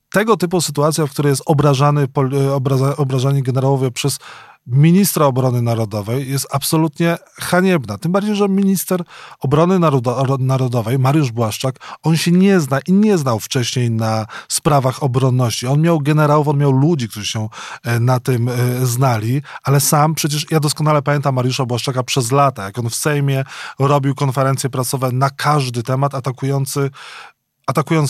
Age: 20-39